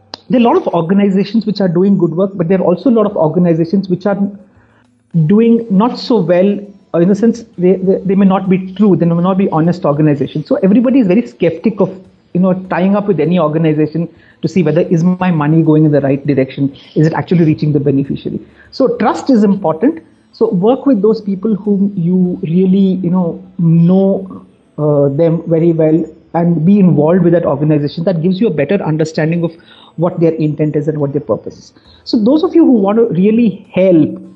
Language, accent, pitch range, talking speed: English, Indian, 155-195 Hz, 215 wpm